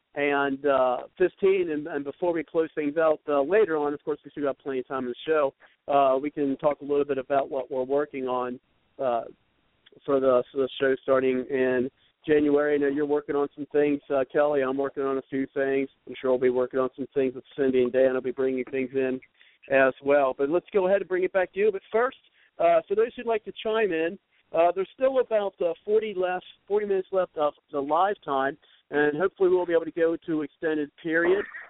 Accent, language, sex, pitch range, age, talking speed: American, English, male, 135-170 Hz, 50-69, 230 wpm